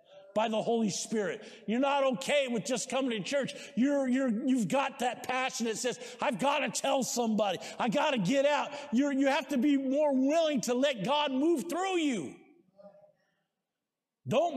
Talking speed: 180 wpm